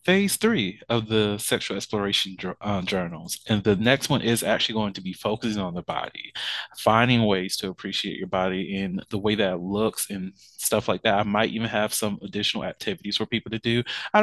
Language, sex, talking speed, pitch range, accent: English, male, 205 wpm, 105-125 Hz, American